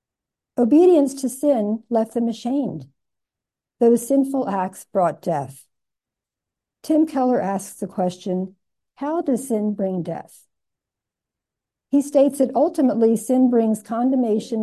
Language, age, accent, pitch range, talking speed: English, 60-79, American, 200-260 Hz, 115 wpm